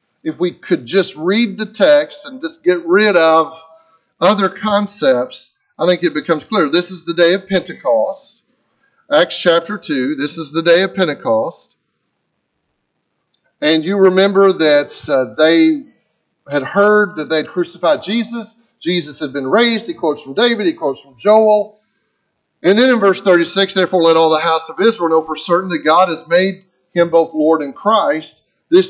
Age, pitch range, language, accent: 40-59, 165-235 Hz, English, American